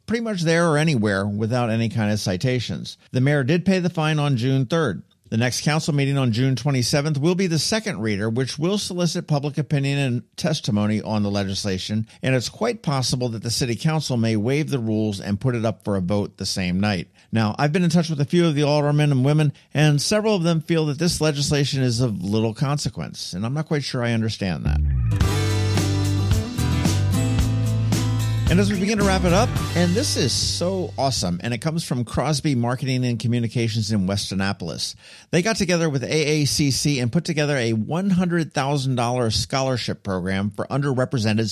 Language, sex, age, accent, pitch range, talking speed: English, male, 50-69, American, 110-155 Hz, 195 wpm